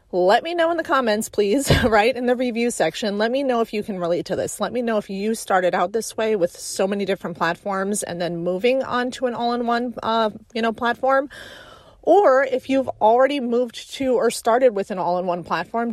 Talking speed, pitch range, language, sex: 220 wpm, 185-250 Hz, English, female